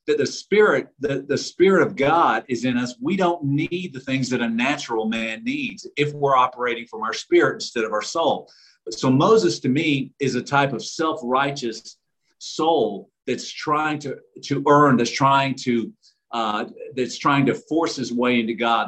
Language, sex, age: English, male, 50-69